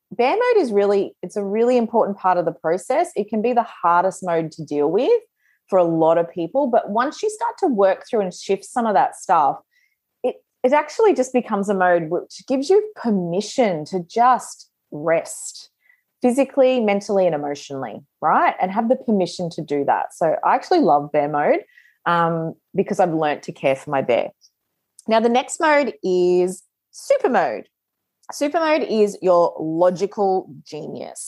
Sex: female